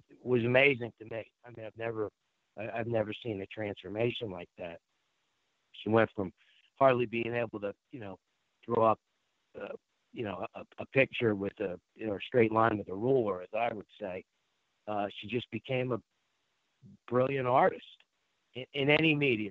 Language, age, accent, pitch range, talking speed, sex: English, 50-69, American, 100-120 Hz, 175 wpm, male